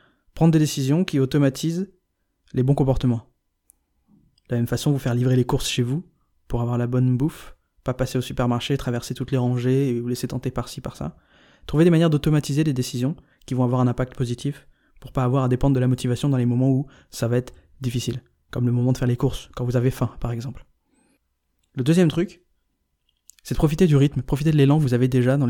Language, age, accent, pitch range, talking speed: French, 20-39, French, 125-135 Hz, 225 wpm